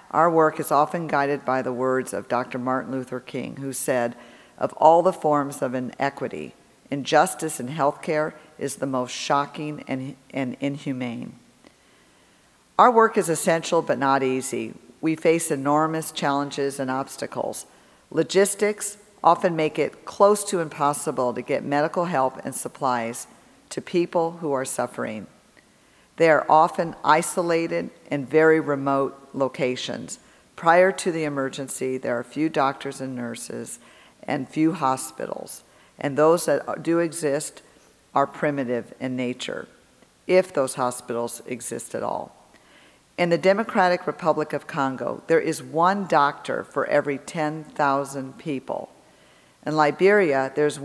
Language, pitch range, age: English, 130-160 Hz, 50-69